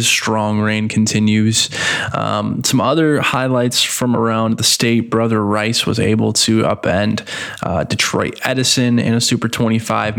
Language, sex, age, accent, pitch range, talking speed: English, male, 20-39, American, 105-120 Hz, 140 wpm